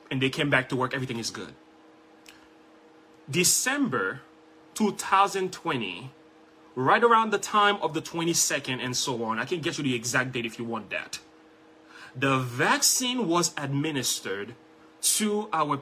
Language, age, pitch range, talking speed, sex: English, 30-49, 130-160 Hz, 145 wpm, male